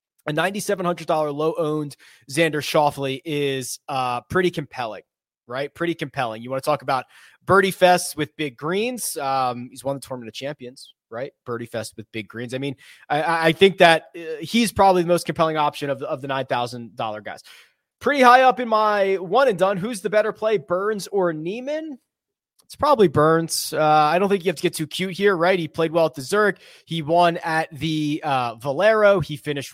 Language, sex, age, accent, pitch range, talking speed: English, male, 20-39, American, 140-180 Hz, 195 wpm